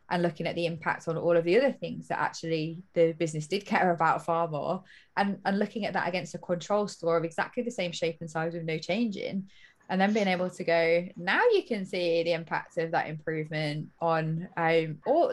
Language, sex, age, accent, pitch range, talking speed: English, female, 20-39, British, 170-200 Hz, 225 wpm